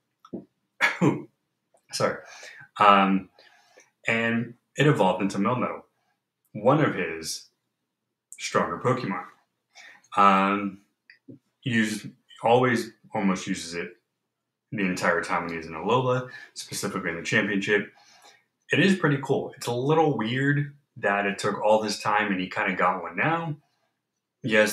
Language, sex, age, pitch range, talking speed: English, male, 20-39, 95-130 Hz, 125 wpm